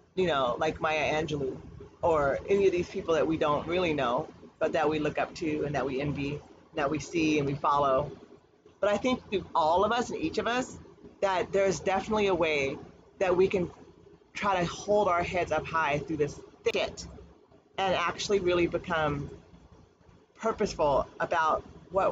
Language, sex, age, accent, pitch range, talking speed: English, female, 40-59, American, 160-210 Hz, 185 wpm